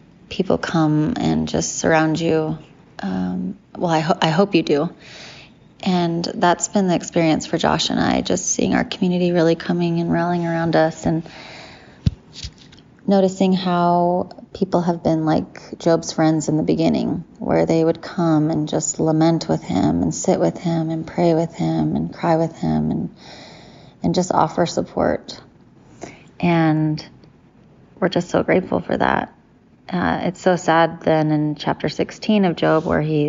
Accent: American